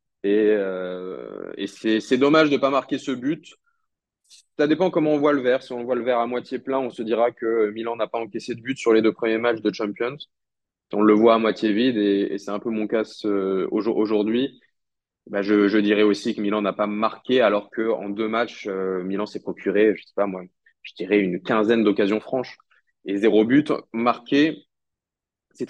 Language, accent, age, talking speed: French, French, 20-39, 205 wpm